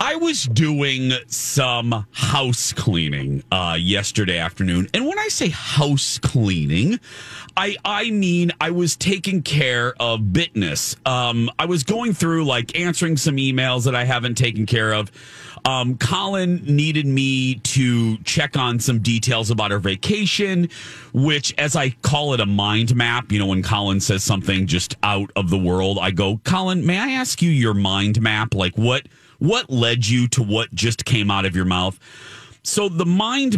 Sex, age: male, 40-59